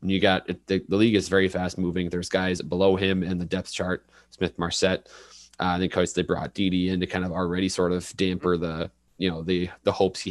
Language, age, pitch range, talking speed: English, 20-39, 85-95 Hz, 225 wpm